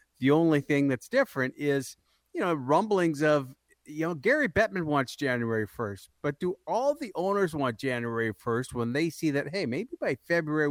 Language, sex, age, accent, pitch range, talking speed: English, male, 50-69, American, 120-155 Hz, 185 wpm